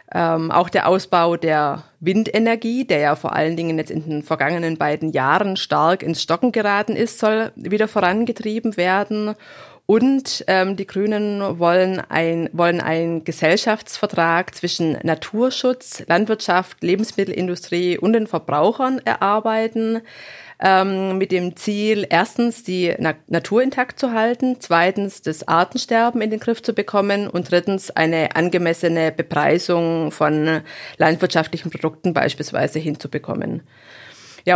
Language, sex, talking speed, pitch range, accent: German, female, 120 wpm, 165-210 Hz, German